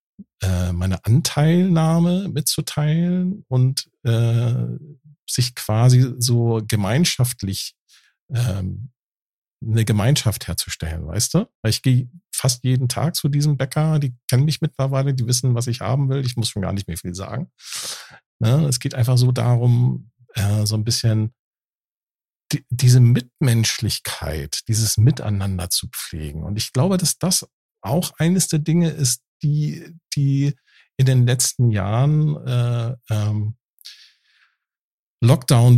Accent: German